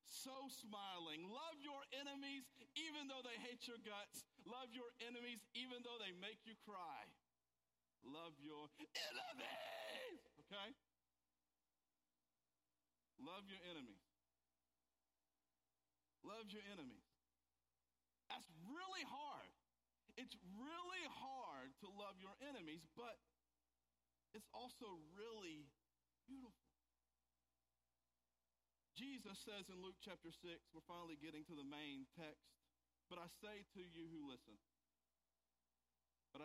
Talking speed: 110 wpm